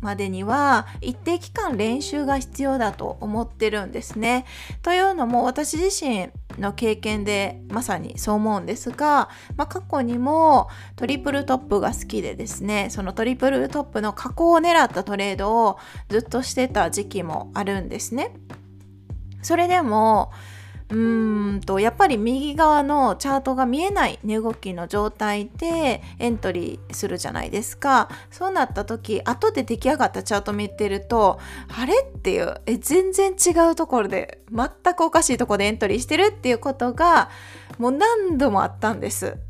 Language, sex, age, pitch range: Japanese, female, 20-39, 205-310 Hz